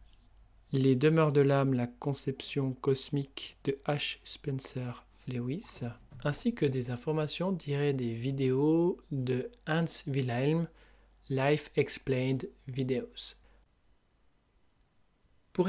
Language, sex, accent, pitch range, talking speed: French, male, French, 135-170 Hz, 95 wpm